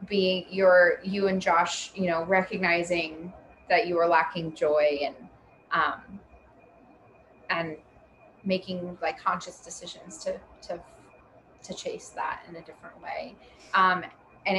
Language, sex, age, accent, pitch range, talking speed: English, female, 20-39, American, 165-190 Hz, 130 wpm